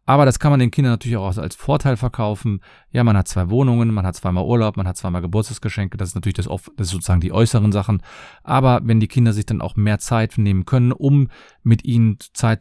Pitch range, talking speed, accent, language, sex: 95-125 Hz, 235 wpm, German, German, male